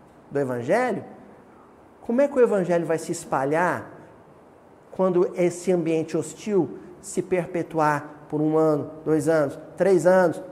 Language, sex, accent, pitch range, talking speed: Portuguese, male, Brazilian, 150-205 Hz, 130 wpm